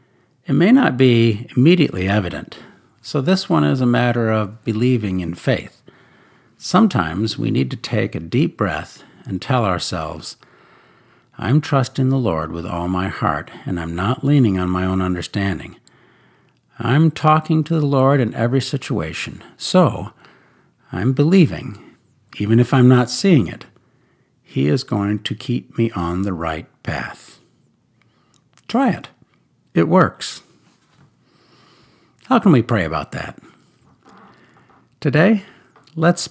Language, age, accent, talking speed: English, 60-79, American, 135 wpm